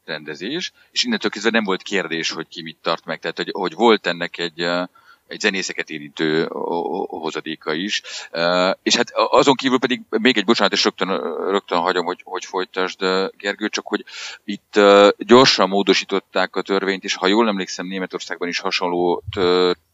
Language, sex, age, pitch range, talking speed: Hungarian, male, 40-59, 85-100 Hz, 155 wpm